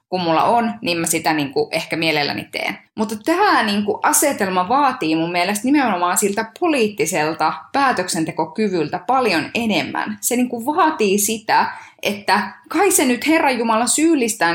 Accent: native